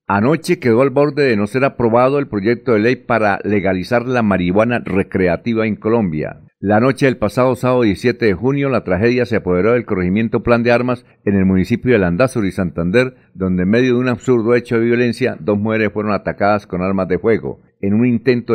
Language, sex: Spanish, male